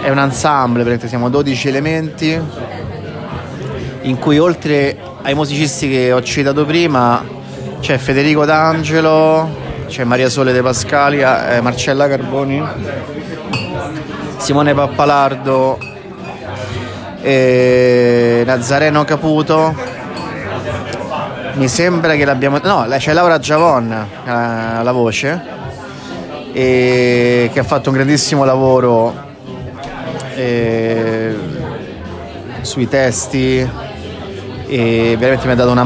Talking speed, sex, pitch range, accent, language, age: 95 wpm, male, 120-150 Hz, native, Italian, 30-49